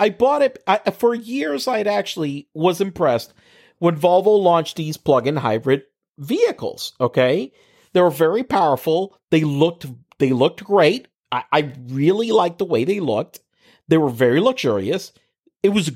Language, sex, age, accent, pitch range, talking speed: English, male, 50-69, American, 155-210 Hz, 155 wpm